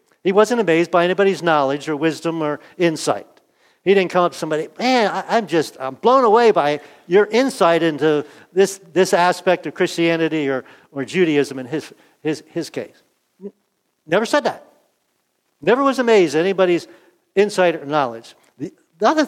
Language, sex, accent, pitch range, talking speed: English, male, American, 145-195 Hz, 165 wpm